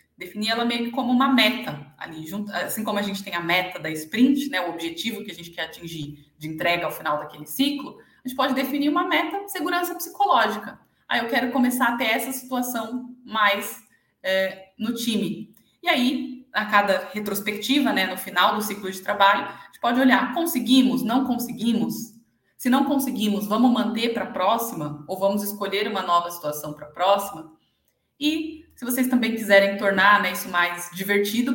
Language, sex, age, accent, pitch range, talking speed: Portuguese, female, 20-39, Brazilian, 185-255 Hz, 190 wpm